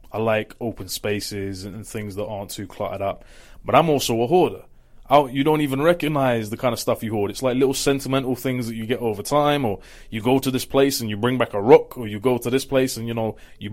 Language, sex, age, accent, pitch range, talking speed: English, male, 20-39, British, 105-135 Hz, 260 wpm